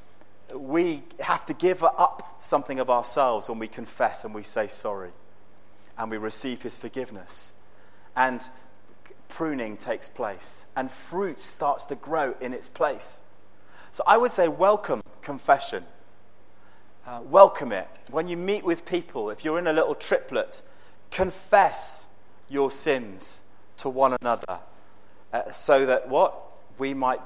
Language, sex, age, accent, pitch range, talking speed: English, male, 30-49, British, 105-140 Hz, 140 wpm